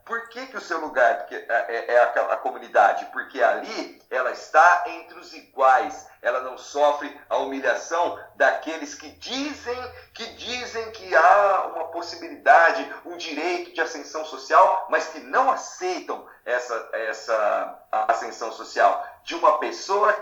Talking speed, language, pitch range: 140 wpm, Portuguese, 135-200 Hz